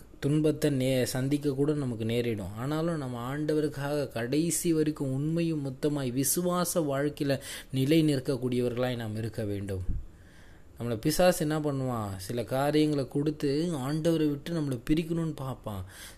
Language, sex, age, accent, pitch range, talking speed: Tamil, male, 20-39, native, 110-145 Hz, 120 wpm